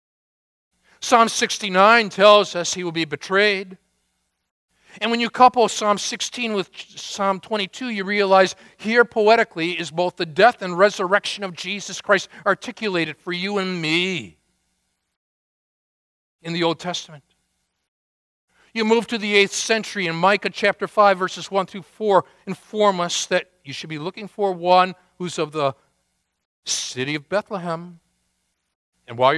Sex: male